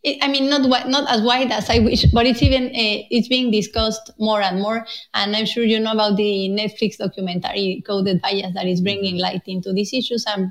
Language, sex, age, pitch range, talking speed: English, female, 20-39, 210-255 Hz, 215 wpm